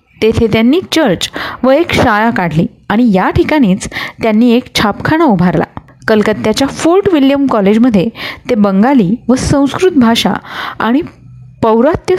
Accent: native